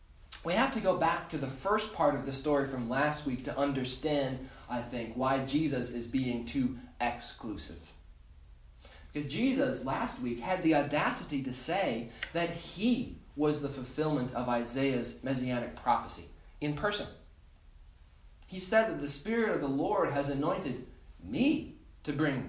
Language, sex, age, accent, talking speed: English, male, 30-49, American, 155 wpm